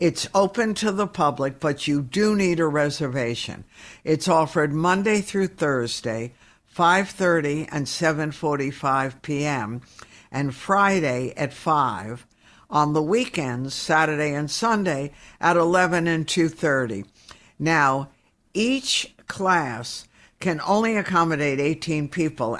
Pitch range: 135-170 Hz